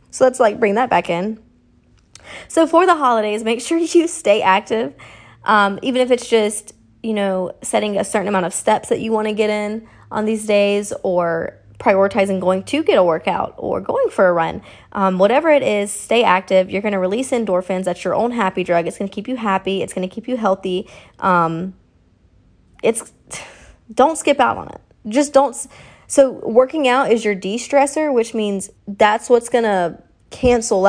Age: 20-39